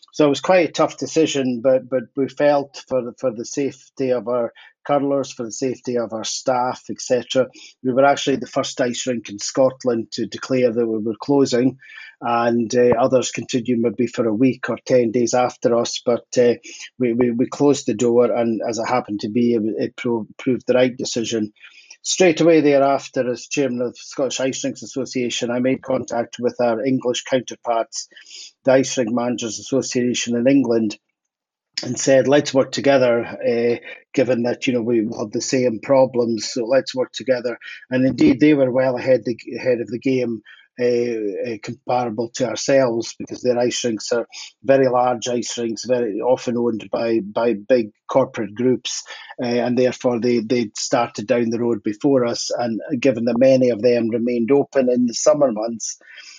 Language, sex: English, male